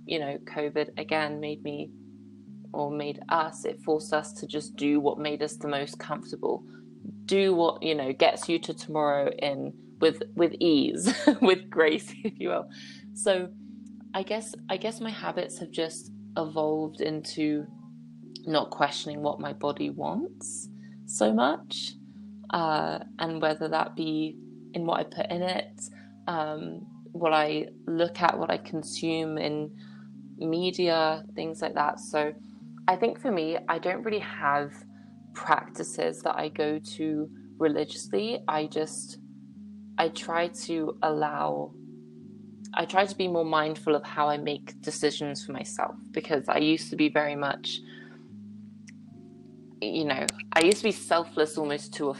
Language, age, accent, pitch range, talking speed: English, 20-39, British, 140-180 Hz, 150 wpm